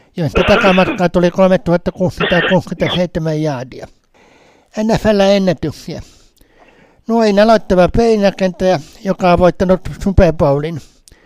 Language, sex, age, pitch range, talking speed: Finnish, male, 60-79, 170-200 Hz, 70 wpm